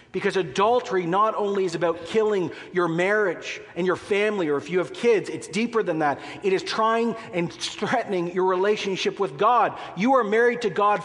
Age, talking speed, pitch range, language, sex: 40-59, 190 wpm, 160-210 Hz, English, male